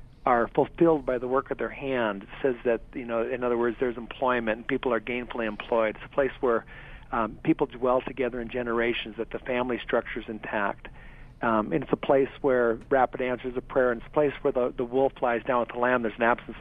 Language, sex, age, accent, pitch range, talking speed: English, male, 50-69, American, 125-145 Hz, 235 wpm